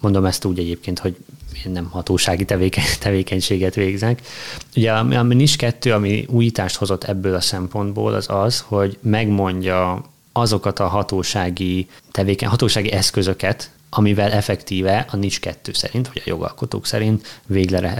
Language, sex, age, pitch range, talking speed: Hungarian, male, 20-39, 90-110 Hz, 135 wpm